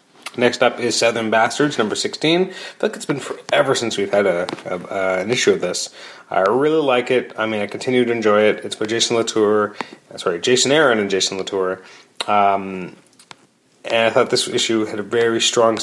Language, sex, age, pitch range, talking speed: English, male, 30-49, 100-125 Hz, 195 wpm